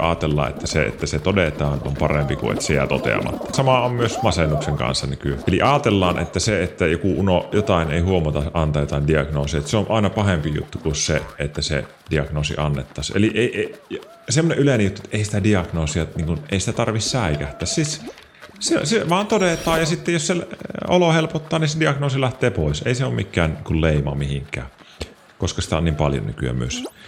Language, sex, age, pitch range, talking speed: Finnish, male, 30-49, 75-110 Hz, 195 wpm